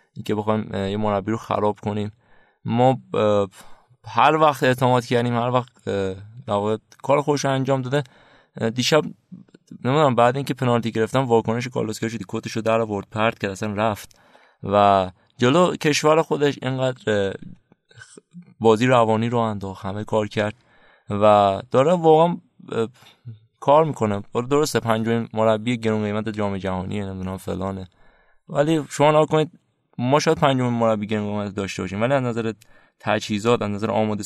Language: Persian